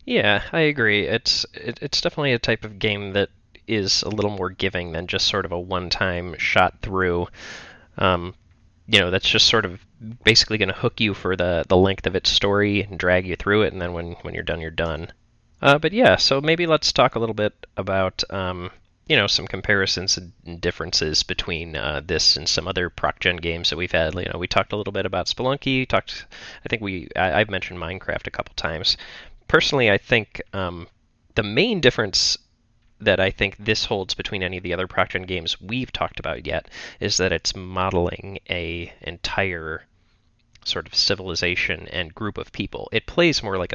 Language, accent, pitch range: English, American, 90-105 Hz